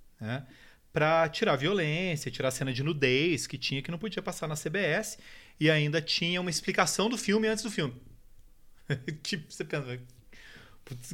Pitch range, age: 130-185 Hz, 30-49